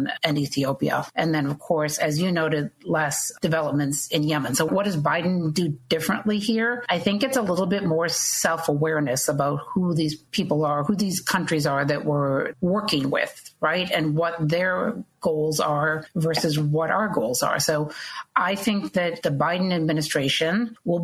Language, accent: English, American